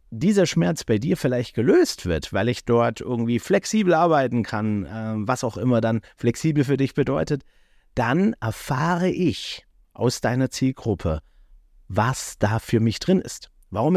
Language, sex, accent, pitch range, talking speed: German, male, German, 110-160 Hz, 155 wpm